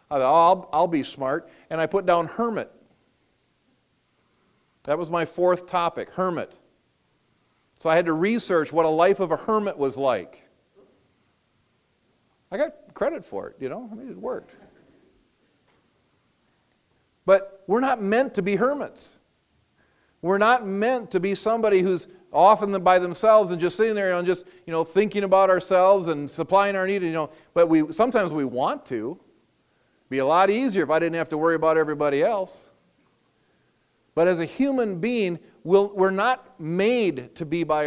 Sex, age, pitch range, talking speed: male, 40-59, 155-200 Hz, 170 wpm